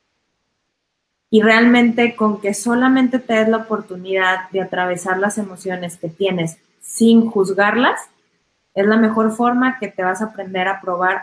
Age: 20-39